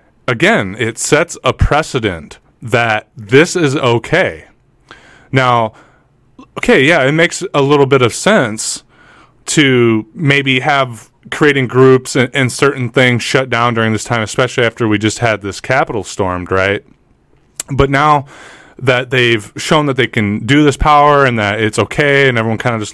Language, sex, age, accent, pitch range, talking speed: English, male, 20-39, American, 110-130 Hz, 160 wpm